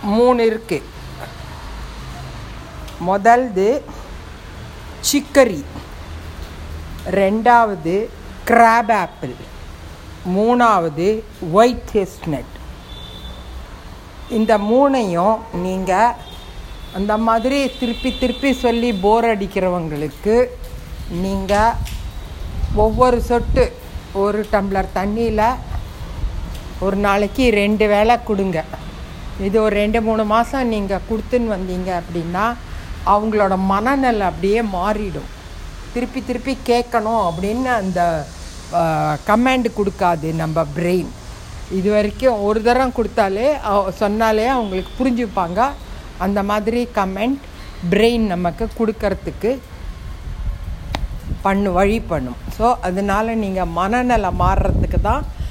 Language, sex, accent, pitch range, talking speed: Tamil, female, native, 170-230 Hz, 85 wpm